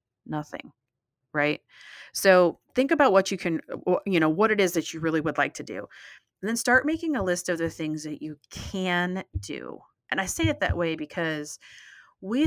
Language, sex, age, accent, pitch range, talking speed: English, female, 30-49, American, 150-195 Hz, 195 wpm